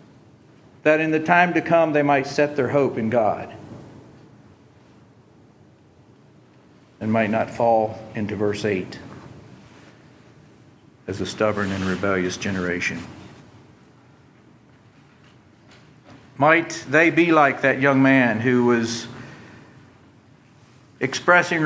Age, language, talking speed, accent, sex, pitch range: 60-79, English, 100 wpm, American, male, 110-140 Hz